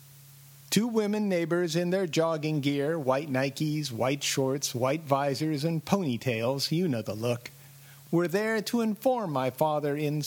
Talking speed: 150 wpm